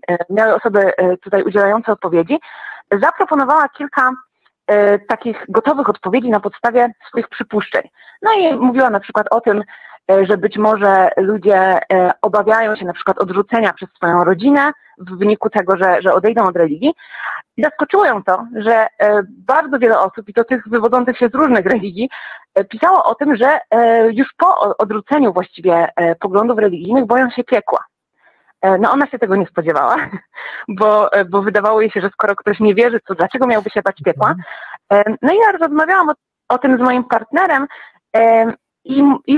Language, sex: Polish, female